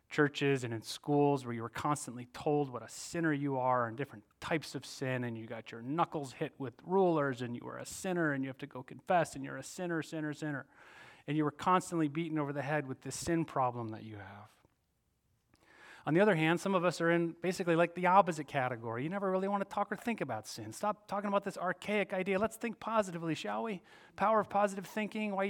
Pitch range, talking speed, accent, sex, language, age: 140-195 Hz, 235 wpm, American, male, English, 30-49